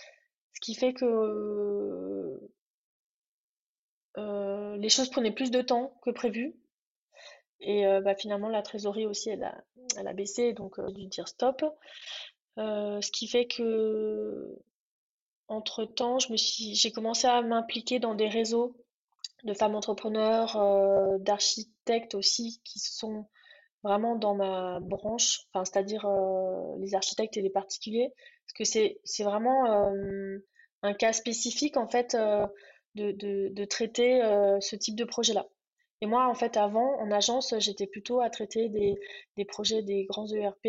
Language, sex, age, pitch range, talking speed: French, female, 20-39, 200-240 Hz, 150 wpm